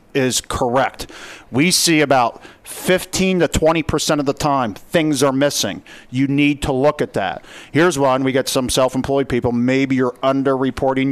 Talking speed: 175 wpm